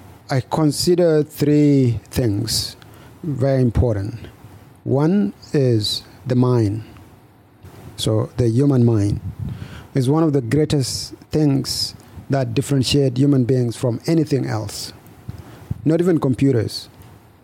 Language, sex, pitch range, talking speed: English, male, 110-140 Hz, 105 wpm